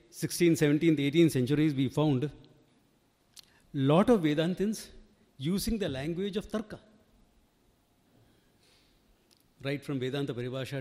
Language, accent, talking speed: English, Indian, 105 wpm